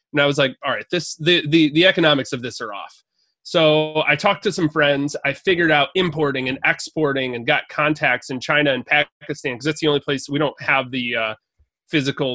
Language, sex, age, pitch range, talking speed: English, male, 30-49, 130-150 Hz, 220 wpm